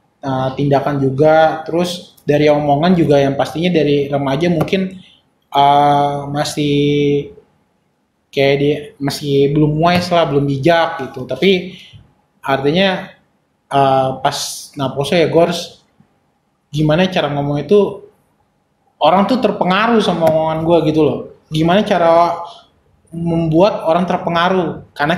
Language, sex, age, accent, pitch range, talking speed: Indonesian, male, 20-39, native, 140-180 Hz, 110 wpm